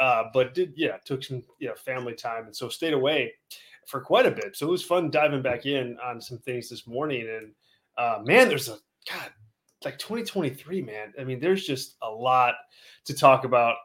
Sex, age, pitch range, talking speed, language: male, 30-49, 125-165 Hz, 210 wpm, English